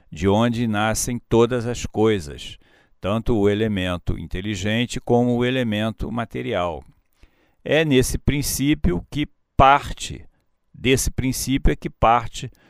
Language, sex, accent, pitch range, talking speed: Portuguese, male, Brazilian, 95-125 Hz, 115 wpm